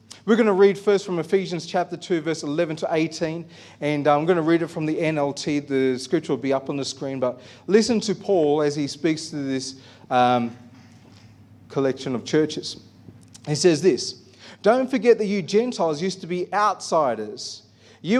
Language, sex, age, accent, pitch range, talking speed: English, male, 30-49, Australian, 140-220 Hz, 185 wpm